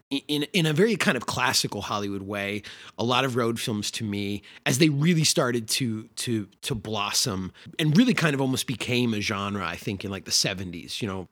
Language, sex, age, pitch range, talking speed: English, male, 30-49, 105-130 Hz, 210 wpm